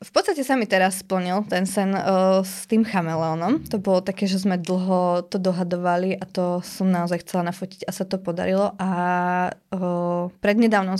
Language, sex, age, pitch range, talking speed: Slovak, female, 20-39, 185-210 Hz, 180 wpm